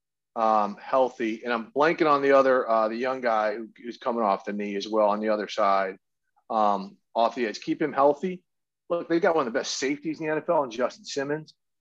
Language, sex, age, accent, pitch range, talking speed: English, male, 40-59, American, 115-170 Hz, 225 wpm